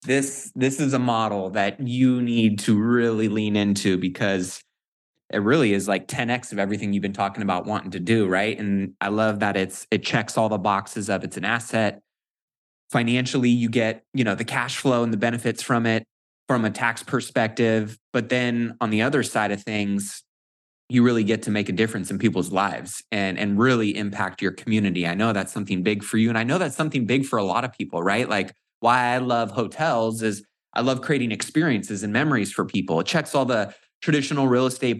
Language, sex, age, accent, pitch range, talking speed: English, male, 20-39, American, 100-120 Hz, 210 wpm